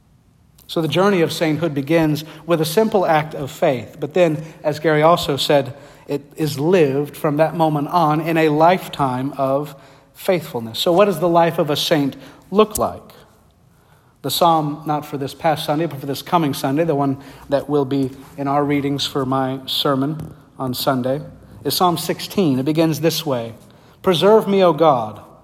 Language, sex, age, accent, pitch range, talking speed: English, male, 50-69, American, 140-165 Hz, 180 wpm